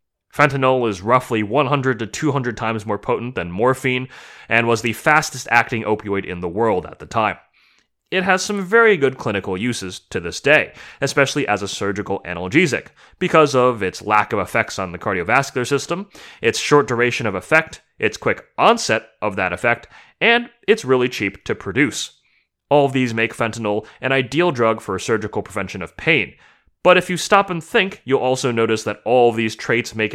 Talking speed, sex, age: 180 wpm, male, 30-49